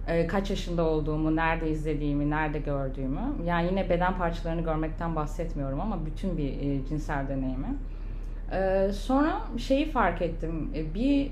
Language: Turkish